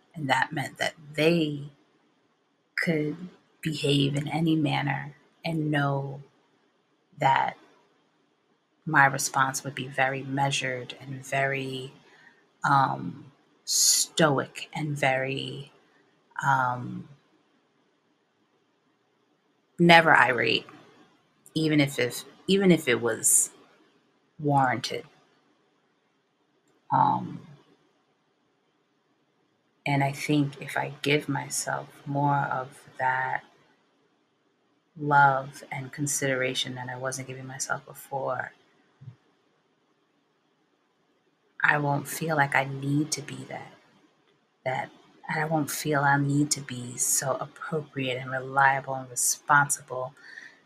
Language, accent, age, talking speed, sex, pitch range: English, American, 30-49, 95 wpm, female, 135-150 Hz